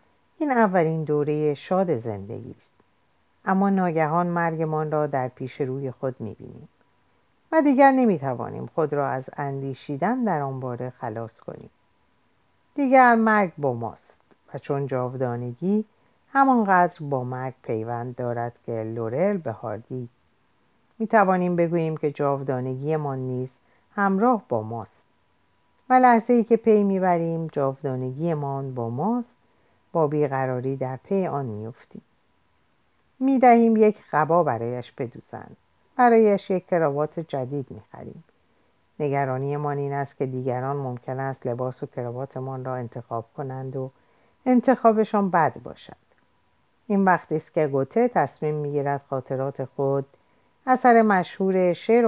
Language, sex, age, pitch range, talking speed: Persian, female, 50-69, 130-195 Hz, 125 wpm